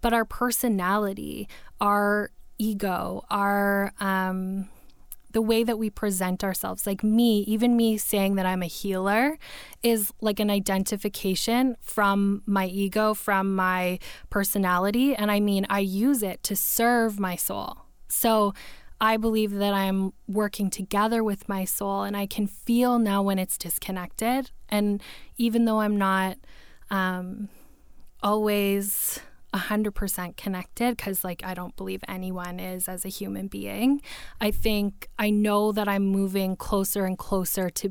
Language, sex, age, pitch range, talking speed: English, female, 10-29, 190-215 Hz, 140 wpm